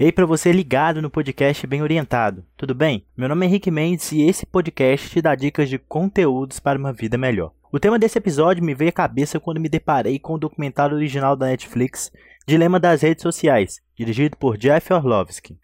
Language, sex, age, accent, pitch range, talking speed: Portuguese, male, 20-39, Brazilian, 140-175 Hz, 205 wpm